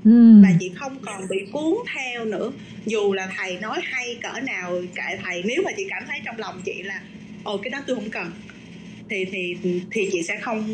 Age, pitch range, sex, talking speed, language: 20-39, 195-240 Hz, female, 210 wpm, Vietnamese